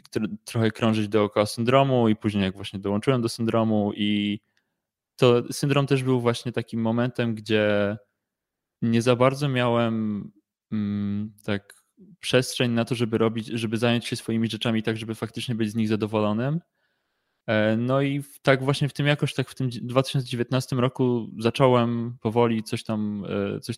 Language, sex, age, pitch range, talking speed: Polish, male, 20-39, 105-125 Hz, 150 wpm